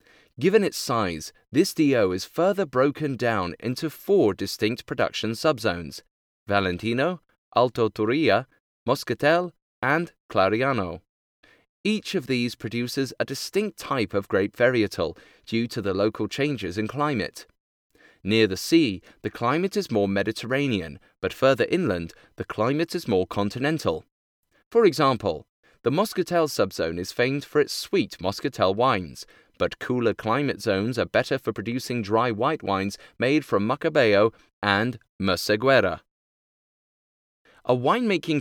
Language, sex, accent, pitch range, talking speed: English, male, British, 105-155 Hz, 130 wpm